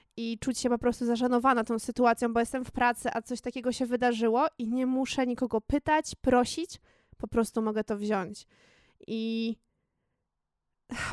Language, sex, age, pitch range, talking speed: Polish, female, 20-39, 225-265 Hz, 160 wpm